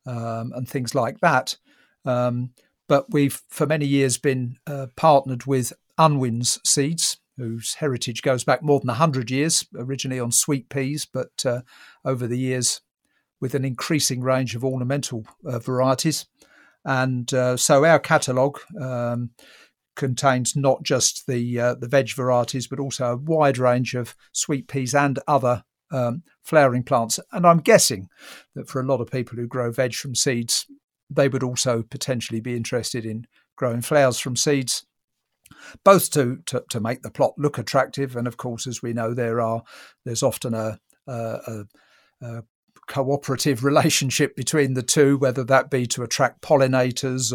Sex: male